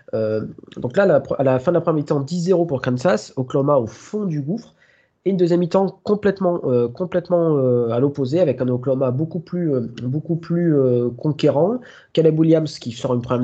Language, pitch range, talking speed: French, 120-170 Hz, 195 wpm